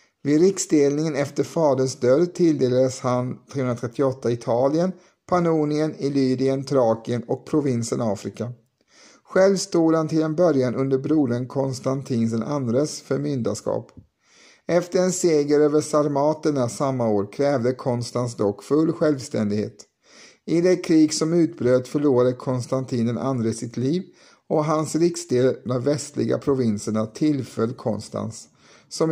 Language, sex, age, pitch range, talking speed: Swedish, male, 50-69, 120-155 Hz, 120 wpm